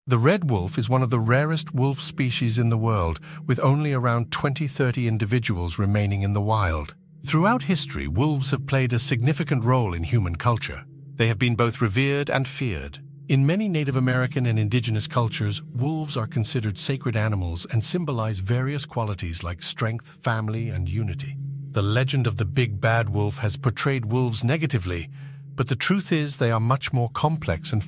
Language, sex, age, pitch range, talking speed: English, male, 50-69, 115-145 Hz, 175 wpm